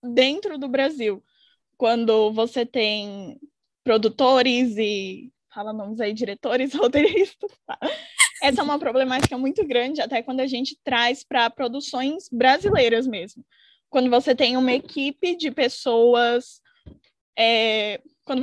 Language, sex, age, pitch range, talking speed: Portuguese, female, 10-29, 230-275 Hz, 115 wpm